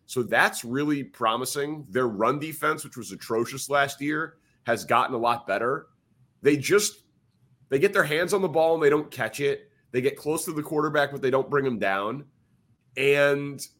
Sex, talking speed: male, 190 wpm